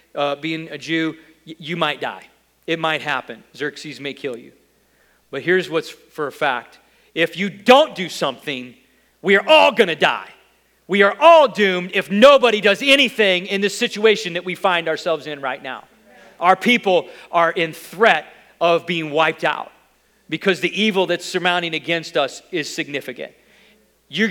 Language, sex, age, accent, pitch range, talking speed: English, male, 40-59, American, 155-210 Hz, 170 wpm